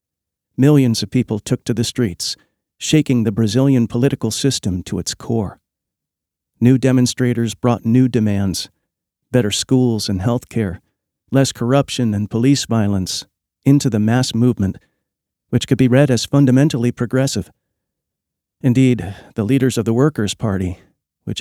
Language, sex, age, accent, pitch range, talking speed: English, male, 50-69, American, 105-130 Hz, 135 wpm